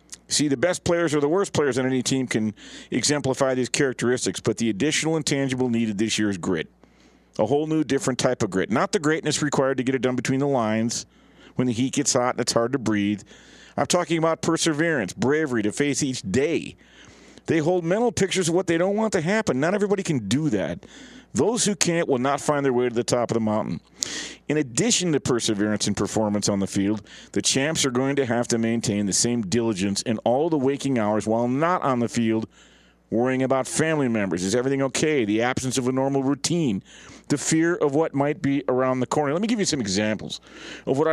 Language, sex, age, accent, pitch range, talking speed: English, male, 50-69, American, 115-160 Hz, 220 wpm